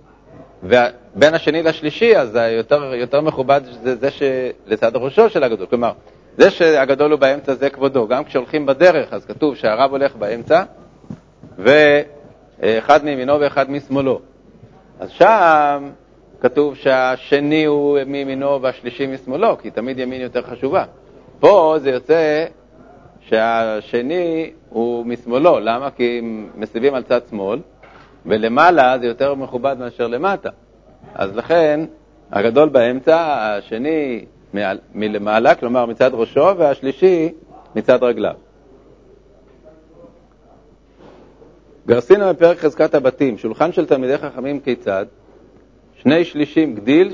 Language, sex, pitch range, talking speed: Hebrew, male, 125-155 Hz, 110 wpm